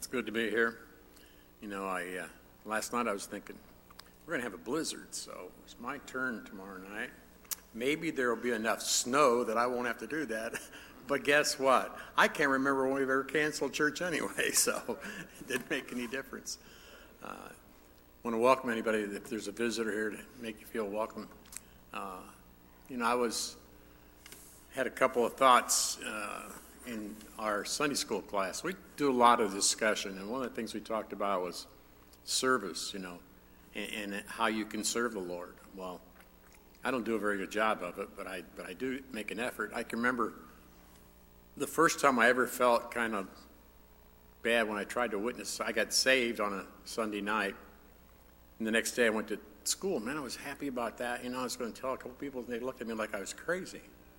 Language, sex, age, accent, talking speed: English, male, 60-79, American, 210 wpm